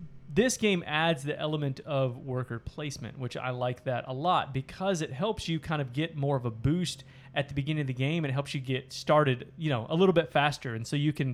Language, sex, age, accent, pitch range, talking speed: English, male, 30-49, American, 130-155 Hz, 250 wpm